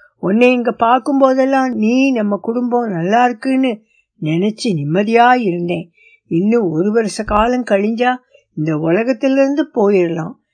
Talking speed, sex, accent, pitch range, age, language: 110 wpm, female, native, 185-260 Hz, 60-79, Tamil